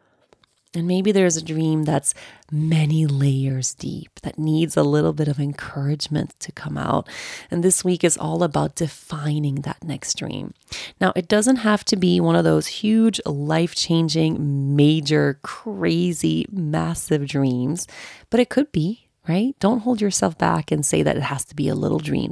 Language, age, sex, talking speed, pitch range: English, 30-49, female, 170 wpm, 155-200 Hz